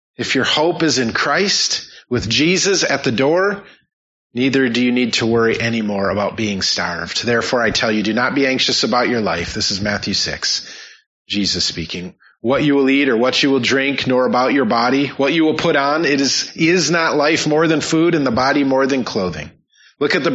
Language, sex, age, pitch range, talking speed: English, male, 30-49, 115-145 Hz, 215 wpm